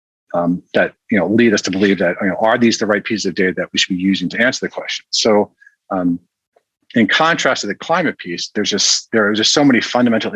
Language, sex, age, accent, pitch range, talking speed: English, male, 40-59, American, 95-115 Hz, 250 wpm